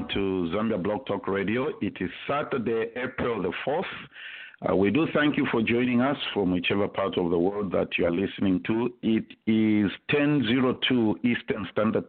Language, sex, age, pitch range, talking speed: English, male, 50-69, 100-125 Hz, 175 wpm